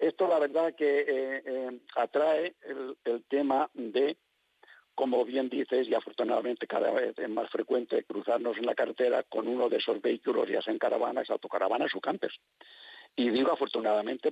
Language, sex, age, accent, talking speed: Spanish, male, 50-69, Spanish, 165 wpm